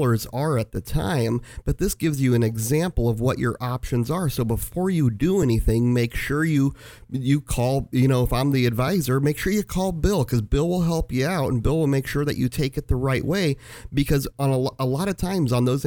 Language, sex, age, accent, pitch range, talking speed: English, male, 40-59, American, 120-145 Hz, 240 wpm